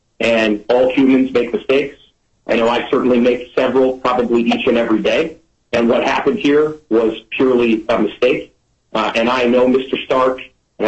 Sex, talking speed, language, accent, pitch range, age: male, 170 wpm, English, American, 115-135 Hz, 40-59